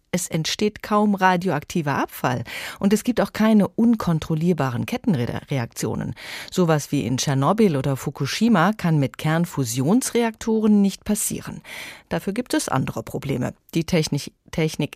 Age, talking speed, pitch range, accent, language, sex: 30-49, 125 wpm, 145-205 Hz, German, German, female